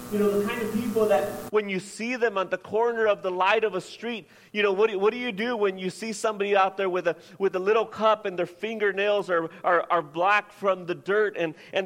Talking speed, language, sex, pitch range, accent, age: 270 wpm, English, male, 190-225 Hz, American, 40-59